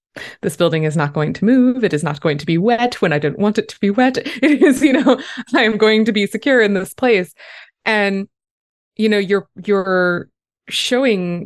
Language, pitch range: English, 170-225 Hz